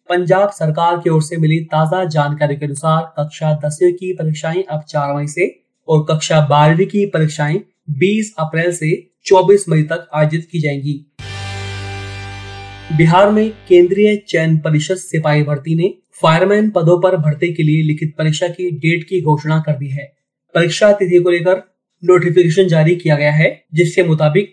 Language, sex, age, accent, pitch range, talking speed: Hindi, male, 30-49, native, 150-180 Hz, 160 wpm